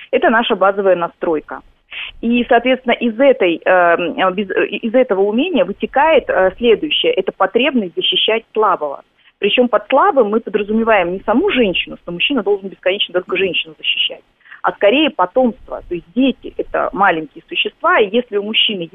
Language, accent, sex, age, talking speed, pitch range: Russian, native, female, 20-39, 145 wpm, 180-240 Hz